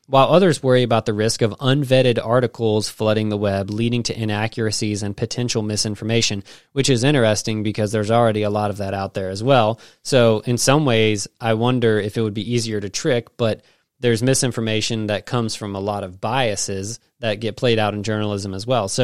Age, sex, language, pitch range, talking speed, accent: 20-39, male, English, 110-130 Hz, 200 wpm, American